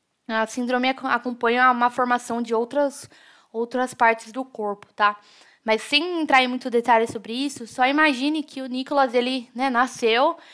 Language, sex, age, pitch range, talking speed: Portuguese, female, 10-29, 225-260 Hz, 160 wpm